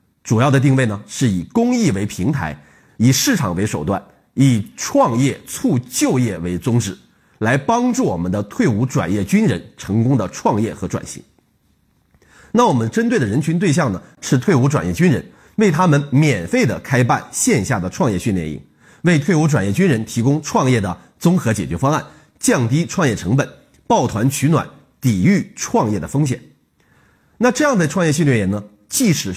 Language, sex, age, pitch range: Chinese, male, 30-49, 105-165 Hz